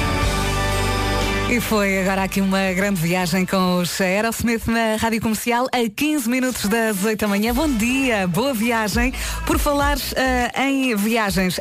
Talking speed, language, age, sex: 150 wpm, Portuguese, 20-39, female